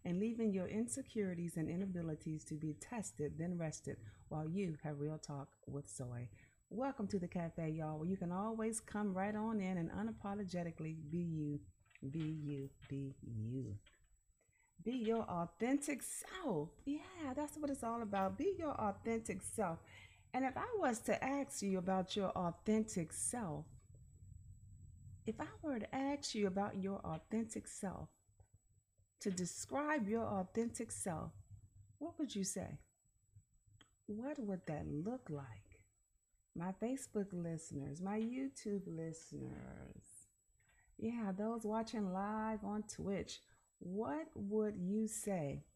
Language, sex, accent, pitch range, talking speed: English, female, American, 150-225 Hz, 135 wpm